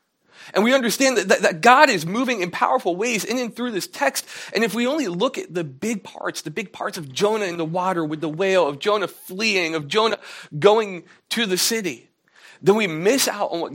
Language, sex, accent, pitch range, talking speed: English, male, American, 160-210 Hz, 225 wpm